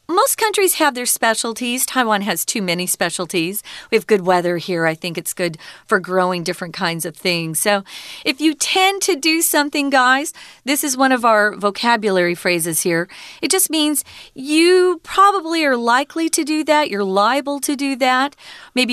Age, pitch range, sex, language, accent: 40-59, 190-275 Hz, female, Chinese, American